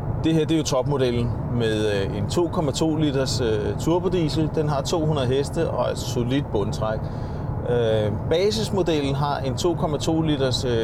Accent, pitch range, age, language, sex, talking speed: native, 115-140 Hz, 30-49, Danish, male, 135 wpm